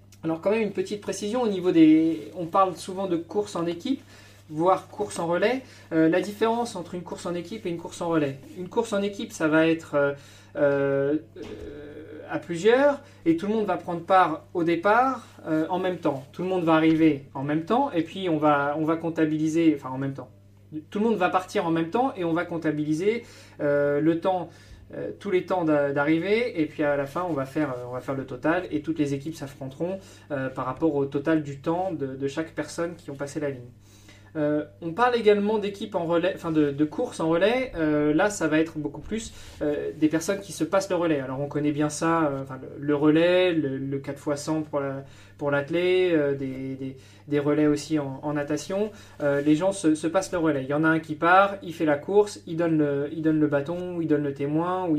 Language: French